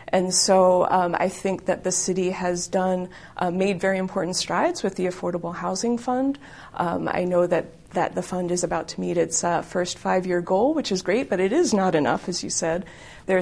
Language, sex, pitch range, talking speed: English, female, 175-190 Hz, 215 wpm